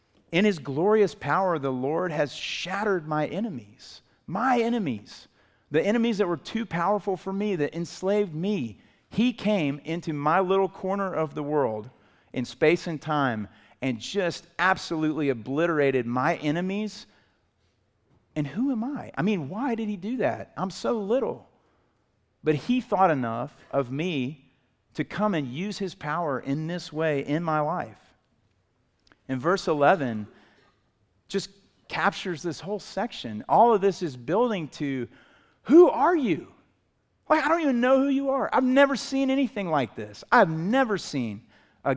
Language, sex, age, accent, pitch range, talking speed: English, male, 40-59, American, 135-205 Hz, 155 wpm